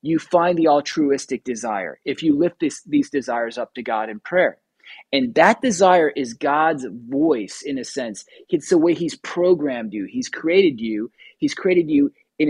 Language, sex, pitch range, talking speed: English, male, 120-180 Hz, 180 wpm